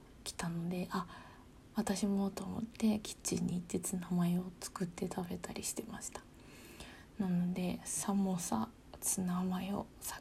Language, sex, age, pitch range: Japanese, female, 20-39, 185-230 Hz